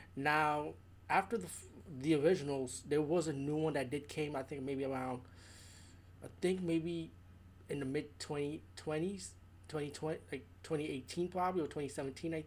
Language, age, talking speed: English, 20-39, 135 wpm